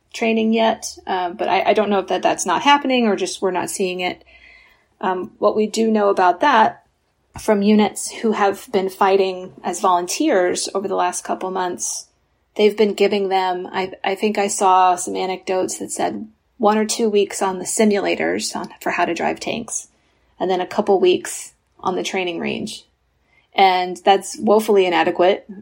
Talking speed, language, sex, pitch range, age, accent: 185 wpm, English, female, 180-210 Hz, 30-49, American